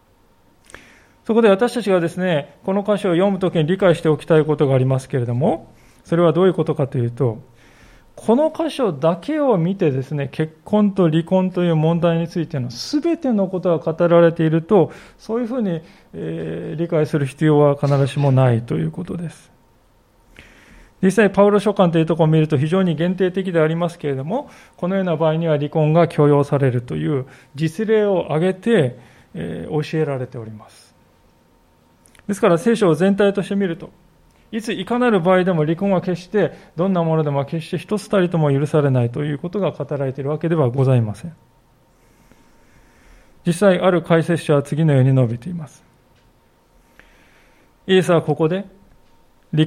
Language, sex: Japanese, male